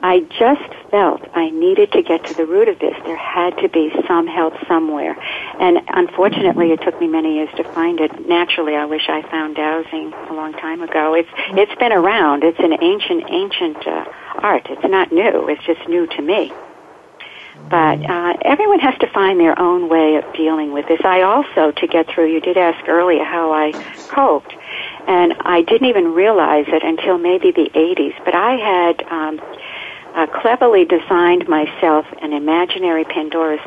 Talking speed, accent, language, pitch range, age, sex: 185 wpm, American, English, 155-180 Hz, 60-79, female